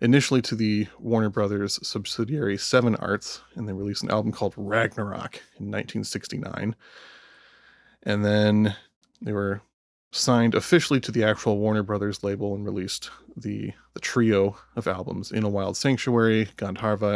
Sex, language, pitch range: male, English, 100-115 Hz